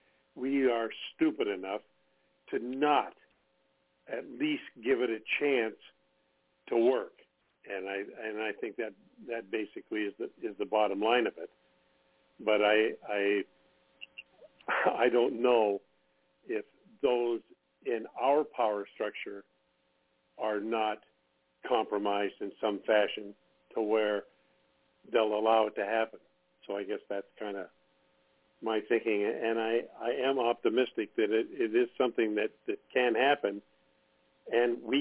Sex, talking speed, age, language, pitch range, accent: male, 135 wpm, 50-69, English, 70-115 Hz, American